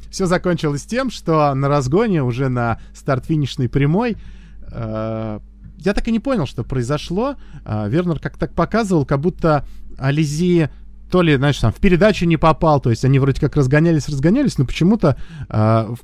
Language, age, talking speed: Russian, 20-39, 155 wpm